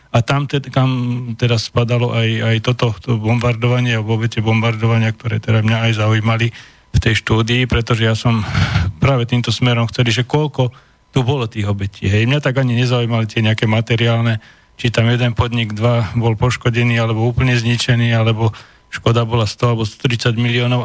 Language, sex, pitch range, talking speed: Slovak, male, 115-125 Hz, 170 wpm